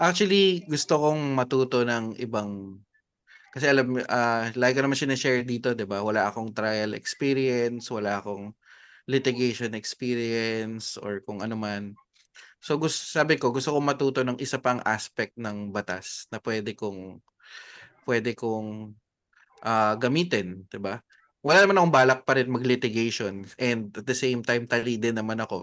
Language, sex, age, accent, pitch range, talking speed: Filipino, male, 20-39, native, 105-130 Hz, 155 wpm